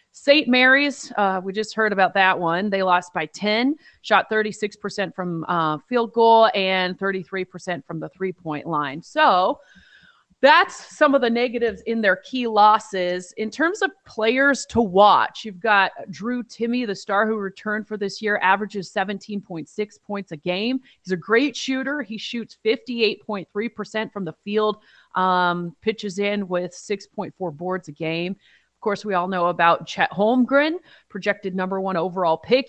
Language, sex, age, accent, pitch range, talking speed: English, female, 30-49, American, 185-235 Hz, 160 wpm